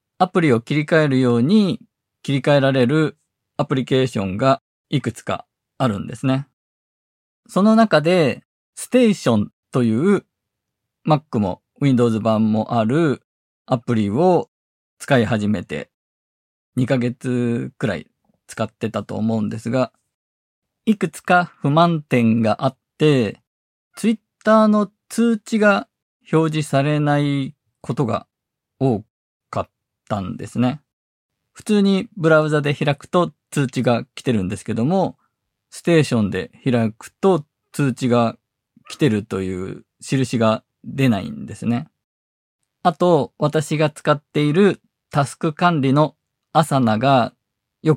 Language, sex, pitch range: Japanese, male, 110-155 Hz